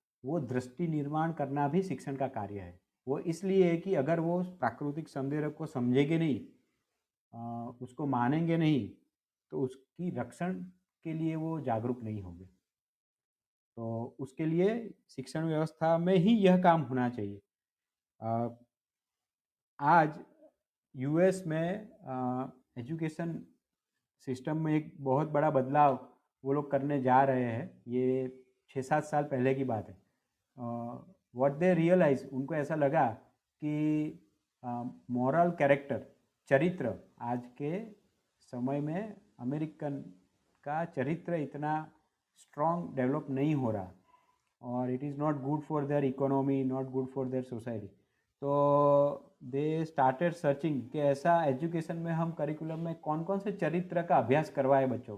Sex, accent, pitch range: male, native, 130-165 Hz